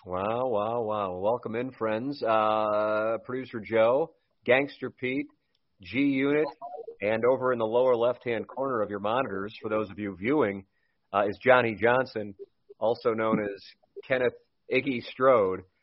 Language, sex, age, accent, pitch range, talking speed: English, male, 40-59, American, 110-140 Hz, 140 wpm